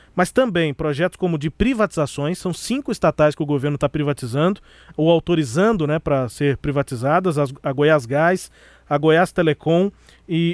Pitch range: 150-190 Hz